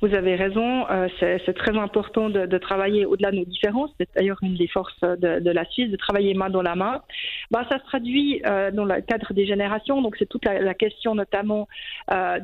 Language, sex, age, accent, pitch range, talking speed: French, female, 40-59, French, 195-230 Hz, 230 wpm